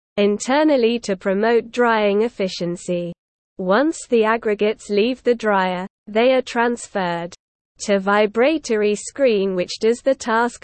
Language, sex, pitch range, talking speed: English, female, 195-240 Hz, 120 wpm